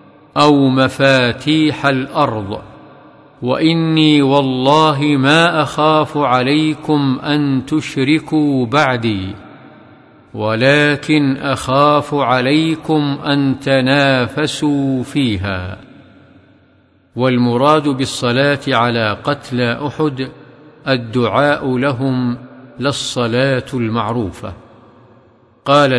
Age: 50-69